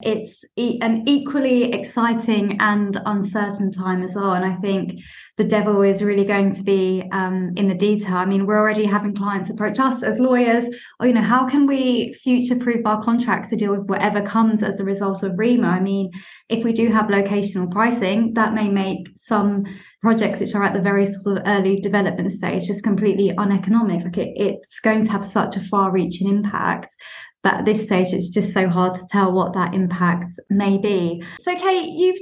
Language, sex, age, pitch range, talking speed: English, female, 20-39, 195-235 Hz, 200 wpm